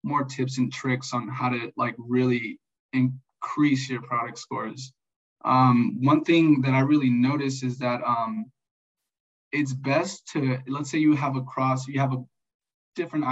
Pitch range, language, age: 125-135 Hz, English, 20-39